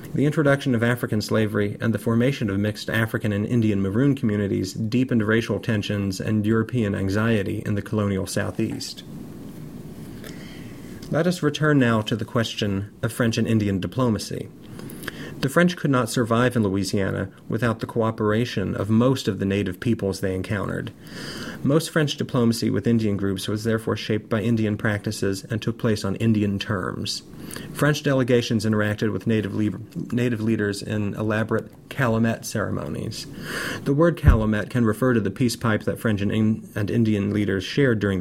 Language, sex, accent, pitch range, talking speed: English, male, American, 100-120 Hz, 155 wpm